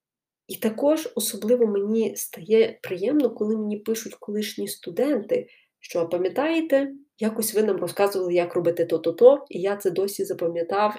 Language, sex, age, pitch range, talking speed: Ukrainian, female, 20-39, 180-230 Hz, 135 wpm